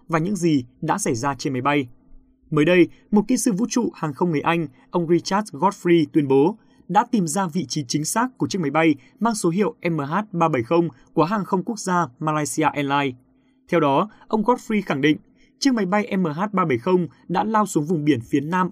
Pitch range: 150-210 Hz